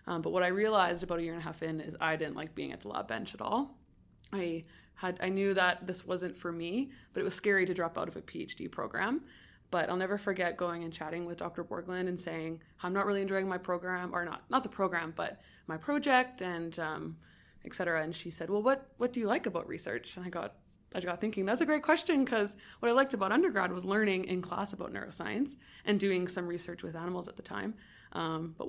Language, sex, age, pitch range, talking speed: English, female, 20-39, 170-205 Hz, 245 wpm